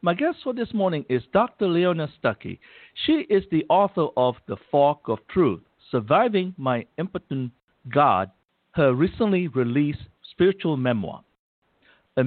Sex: male